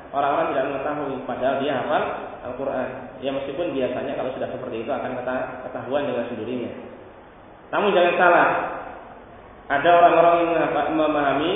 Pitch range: 135-190 Hz